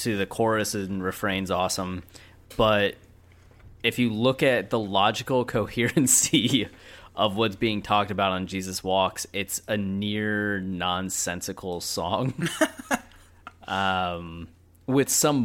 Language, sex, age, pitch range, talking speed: English, male, 20-39, 90-105 Hz, 115 wpm